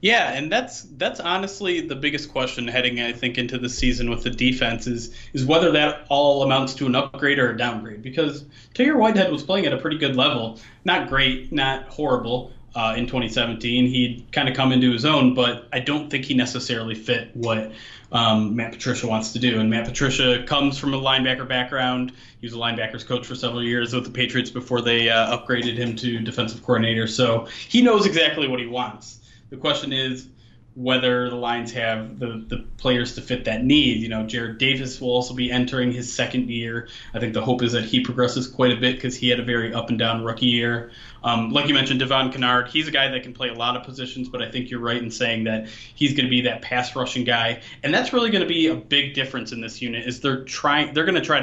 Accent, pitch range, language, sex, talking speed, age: American, 120-135 Hz, English, male, 225 wpm, 20-39